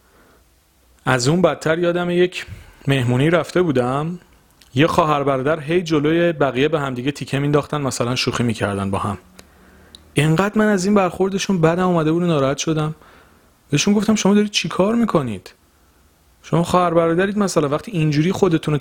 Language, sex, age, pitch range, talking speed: Persian, male, 40-59, 115-170 Hz, 155 wpm